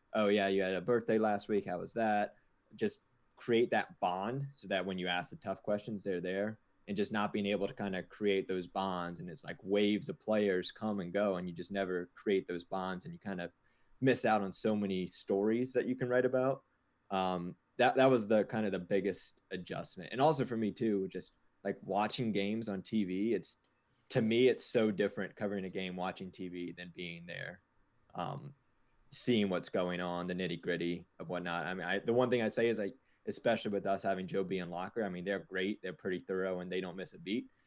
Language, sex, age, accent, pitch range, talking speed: English, male, 20-39, American, 90-105 Hz, 230 wpm